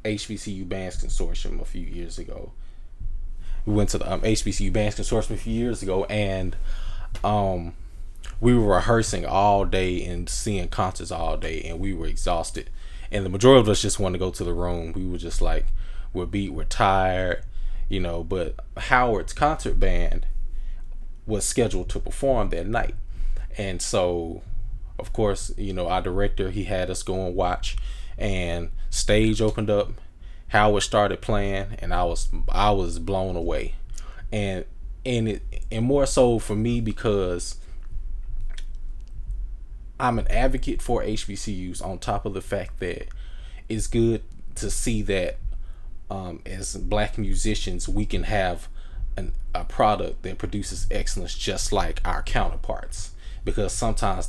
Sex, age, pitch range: male, 20-39, 85-105 Hz